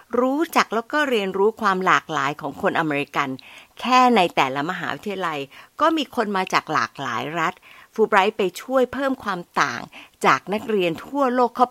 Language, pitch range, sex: Thai, 175-255 Hz, female